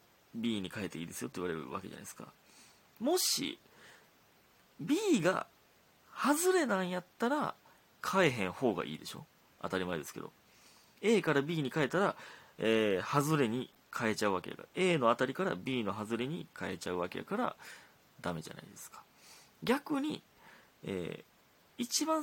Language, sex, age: Japanese, male, 30-49